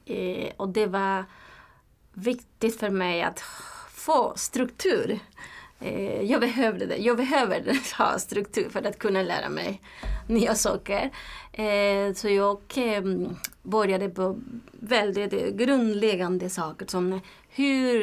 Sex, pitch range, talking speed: female, 190-220 Hz, 120 wpm